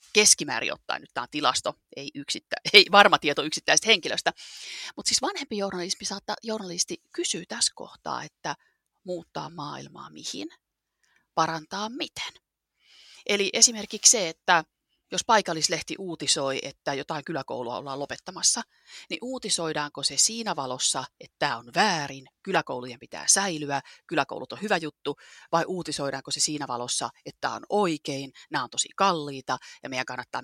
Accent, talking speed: native, 140 wpm